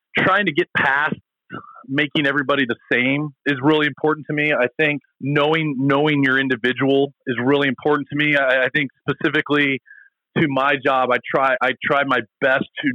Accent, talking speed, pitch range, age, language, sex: American, 175 wpm, 130-155 Hz, 30-49, English, male